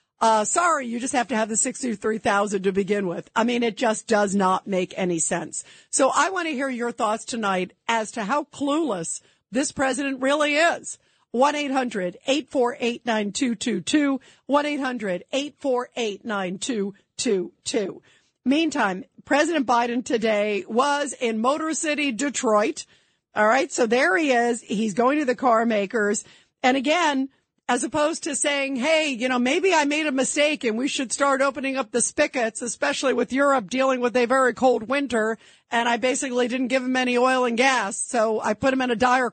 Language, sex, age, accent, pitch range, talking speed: English, female, 50-69, American, 230-285 Hz, 165 wpm